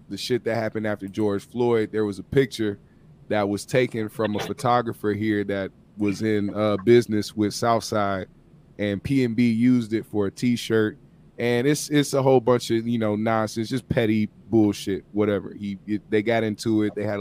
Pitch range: 100-115 Hz